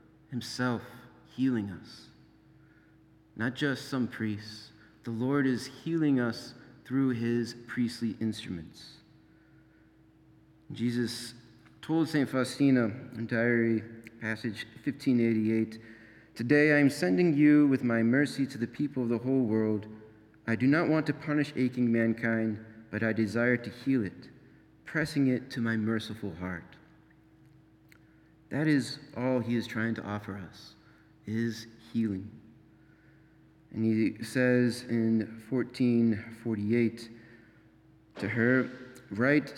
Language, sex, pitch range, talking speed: English, male, 110-130 Hz, 120 wpm